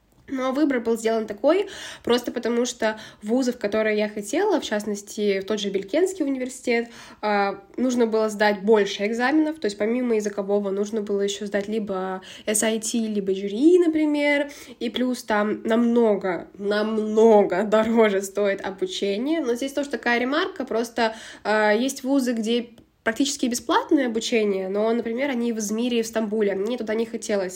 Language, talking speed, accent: Russian, 150 wpm, native